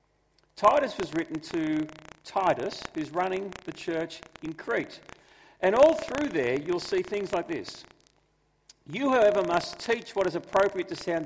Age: 40-59